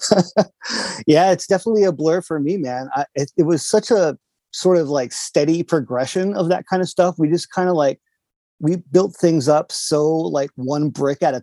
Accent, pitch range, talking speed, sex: American, 130-175 Hz, 200 wpm, male